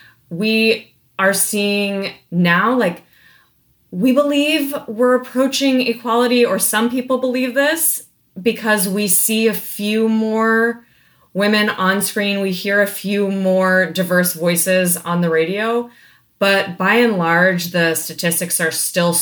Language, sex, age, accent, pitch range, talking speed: English, female, 20-39, American, 165-215 Hz, 130 wpm